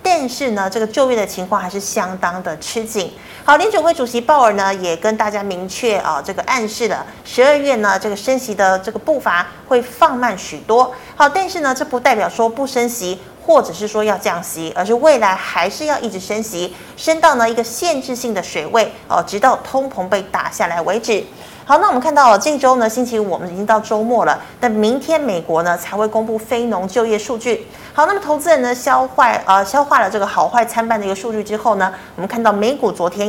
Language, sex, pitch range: Chinese, female, 200-265 Hz